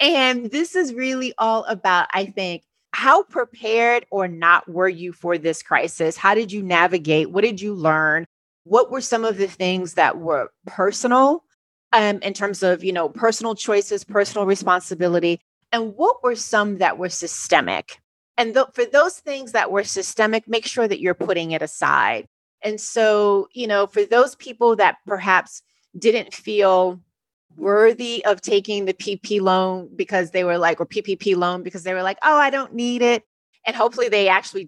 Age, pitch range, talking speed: 30-49, 185-250 Hz, 180 wpm